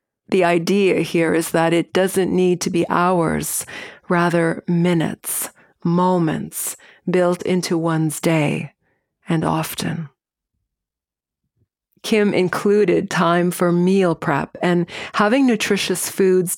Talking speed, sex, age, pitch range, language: 110 wpm, female, 40-59, 165-185 Hz, English